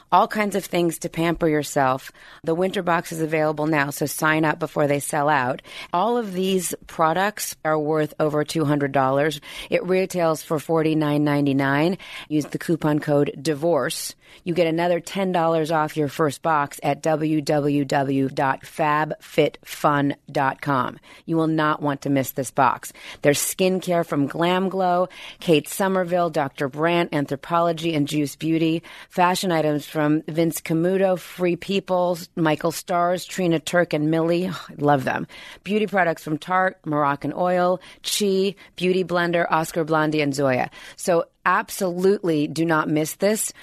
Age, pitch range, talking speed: 30-49, 150-175 Hz, 150 wpm